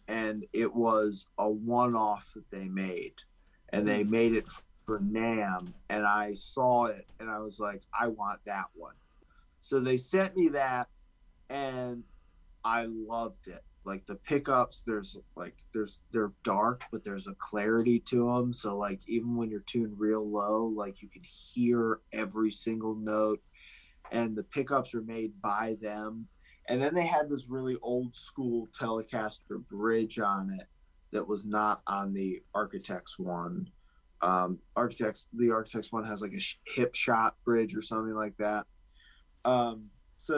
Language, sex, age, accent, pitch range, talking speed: English, male, 20-39, American, 105-120 Hz, 155 wpm